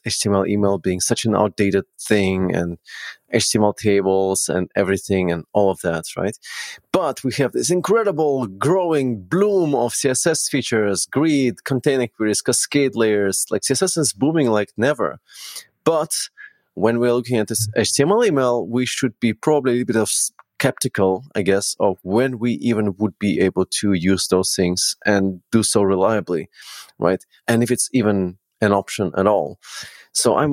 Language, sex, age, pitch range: English, male, 30-49, 95-125 Hz